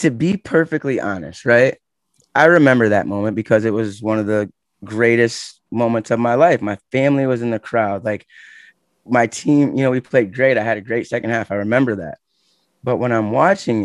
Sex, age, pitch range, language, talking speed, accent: male, 20-39, 100-130 Hz, English, 205 wpm, American